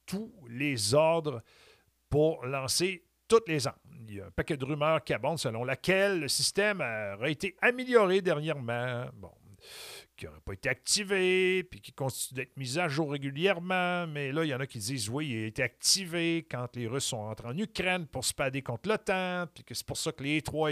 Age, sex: 50-69, male